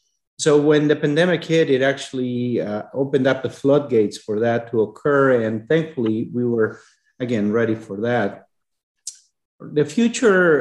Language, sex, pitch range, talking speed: English, male, 120-145 Hz, 145 wpm